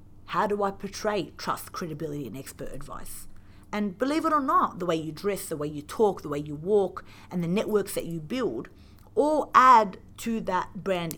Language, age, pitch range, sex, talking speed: English, 30-49, 160-210 Hz, female, 200 wpm